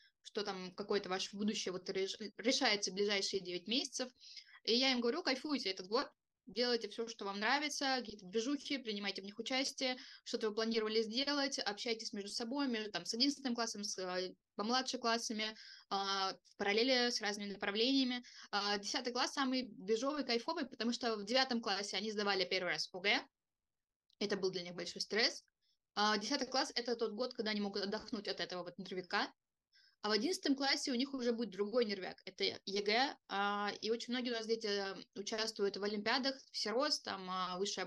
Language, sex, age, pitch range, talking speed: Russian, female, 20-39, 205-255 Hz, 175 wpm